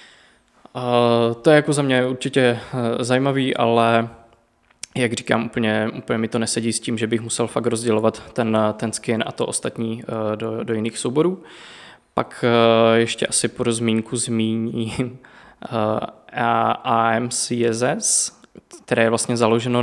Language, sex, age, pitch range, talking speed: Czech, male, 20-39, 115-125 Hz, 130 wpm